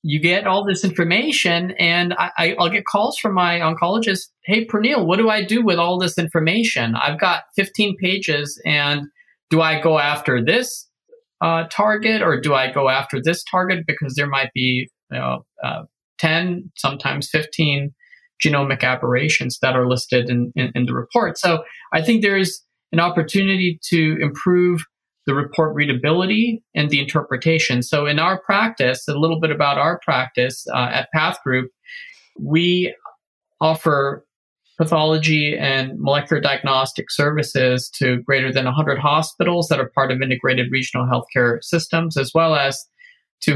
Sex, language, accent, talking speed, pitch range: male, English, American, 155 wpm, 135-180 Hz